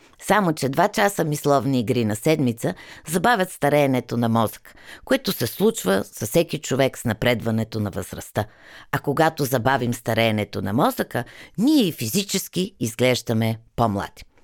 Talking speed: 135 wpm